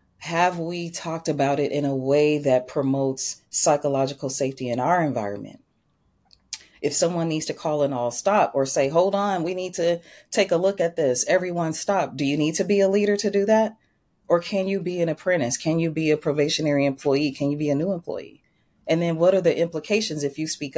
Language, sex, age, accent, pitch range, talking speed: English, female, 30-49, American, 135-170 Hz, 215 wpm